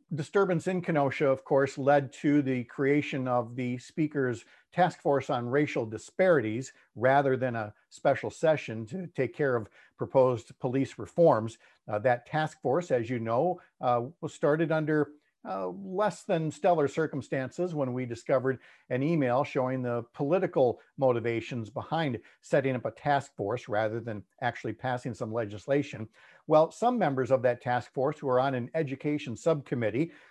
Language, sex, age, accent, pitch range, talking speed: English, male, 50-69, American, 125-160 Hz, 155 wpm